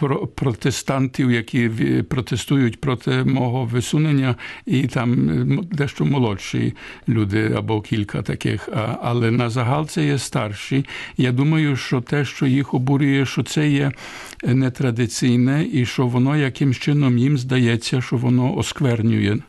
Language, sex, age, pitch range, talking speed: Ukrainian, male, 60-79, 110-140 Hz, 125 wpm